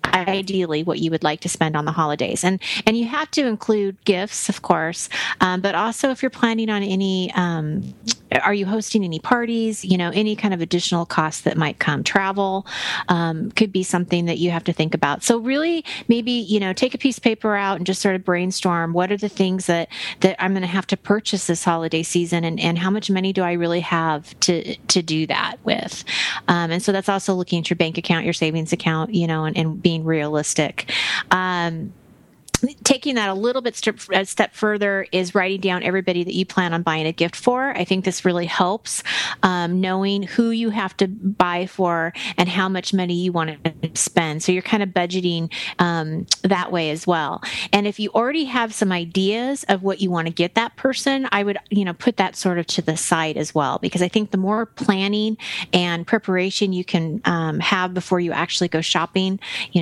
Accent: American